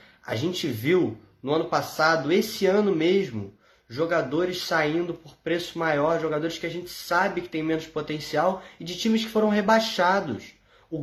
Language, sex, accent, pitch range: Portuguese, male, Brazilian, 160-200 Hz